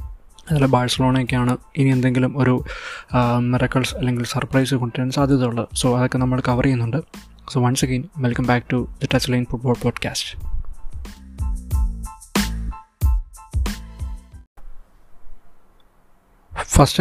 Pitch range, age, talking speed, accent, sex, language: 120-130 Hz, 20-39, 95 wpm, native, male, Malayalam